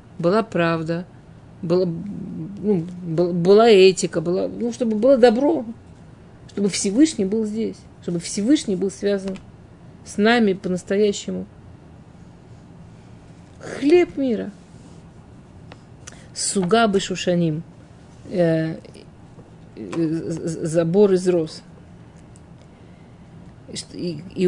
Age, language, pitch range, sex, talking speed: 40-59, Russian, 175-210 Hz, female, 85 wpm